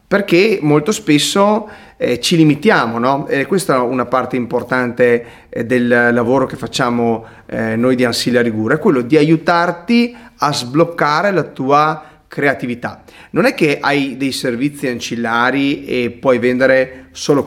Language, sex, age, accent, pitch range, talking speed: Italian, male, 30-49, native, 120-165 Hz, 150 wpm